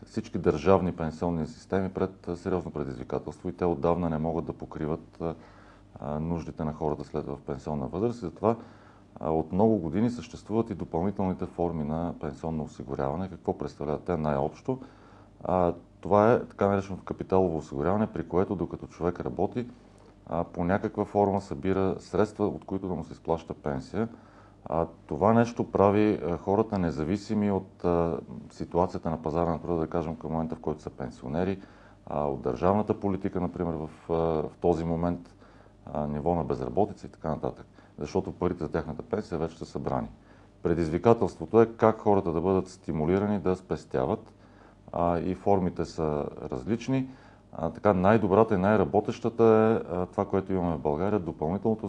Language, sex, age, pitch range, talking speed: Bulgarian, male, 40-59, 80-100 Hz, 155 wpm